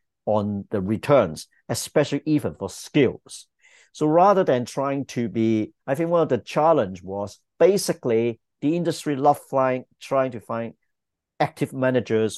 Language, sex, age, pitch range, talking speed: English, male, 50-69, 110-135 Hz, 140 wpm